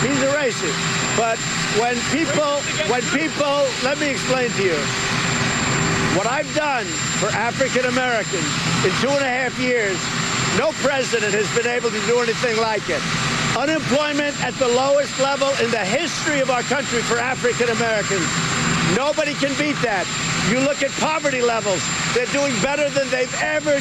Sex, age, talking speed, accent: male, 50-69, 155 wpm, American